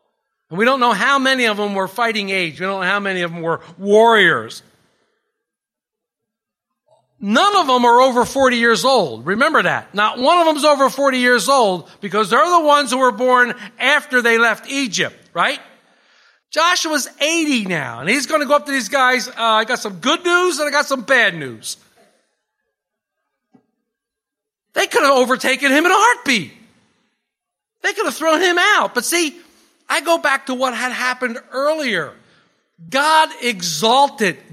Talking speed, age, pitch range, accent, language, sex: 175 wpm, 50-69, 225-305 Hz, American, English, male